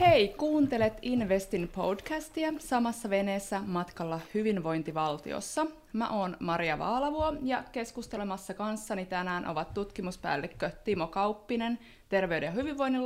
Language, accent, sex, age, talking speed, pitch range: Finnish, native, female, 20-39, 100 wpm, 170-225 Hz